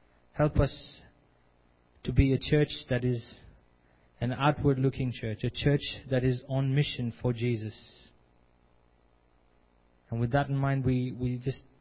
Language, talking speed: English, 135 wpm